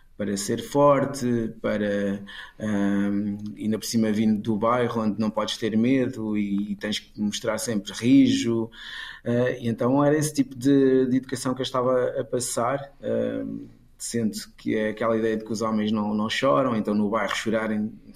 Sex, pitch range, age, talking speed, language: male, 110-130 Hz, 20-39, 180 wpm, Portuguese